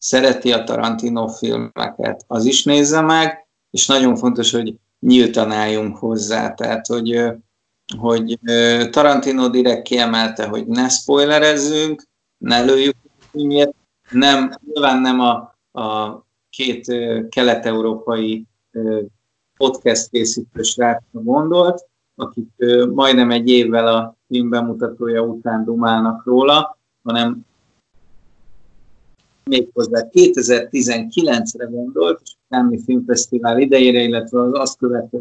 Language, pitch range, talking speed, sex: Hungarian, 115-135 Hz, 100 wpm, male